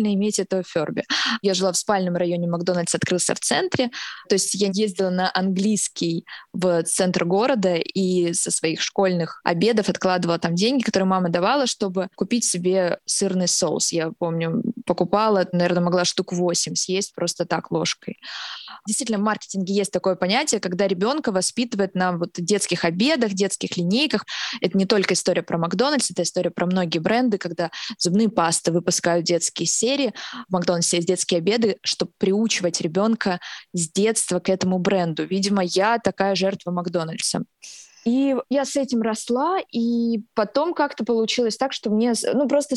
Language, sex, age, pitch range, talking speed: Russian, female, 20-39, 180-225 Hz, 155 wpm